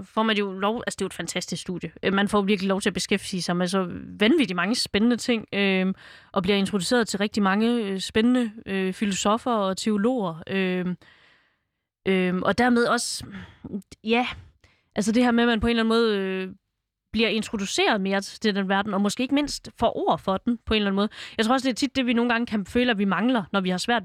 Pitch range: 190-235 Hz